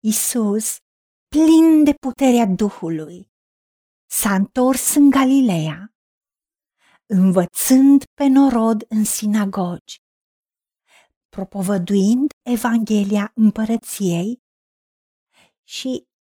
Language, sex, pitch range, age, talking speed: Romanian, female, 205-265 Hz, 40-59, 65 wpm